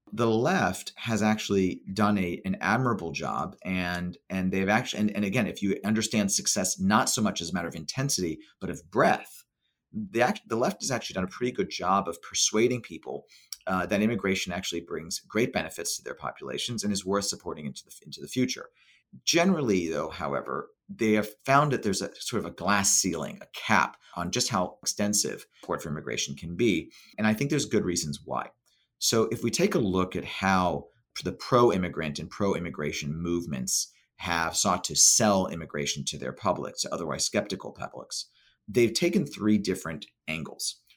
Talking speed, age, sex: 185 wpm, 40-59, male